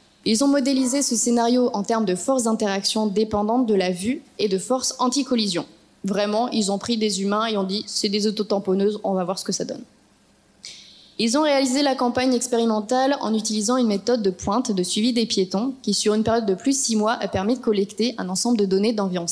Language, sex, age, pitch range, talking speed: French, female, 20-39, 200-240 Hz, 220 wpm